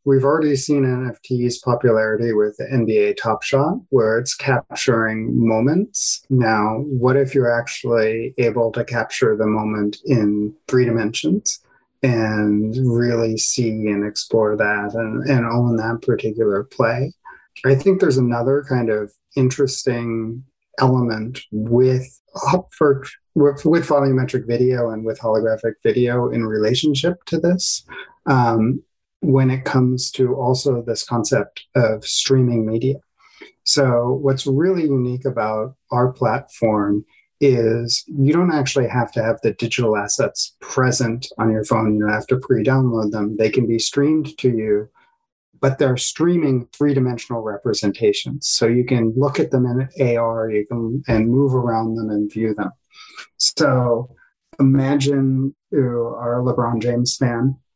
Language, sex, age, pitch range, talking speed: English, male, 40-59, 115-135 Hz, 135 wpm